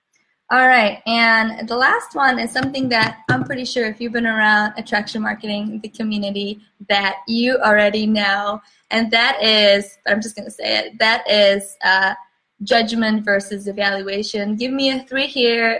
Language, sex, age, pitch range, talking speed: English, female, 20-39, 200-235 Hz, 165 wpm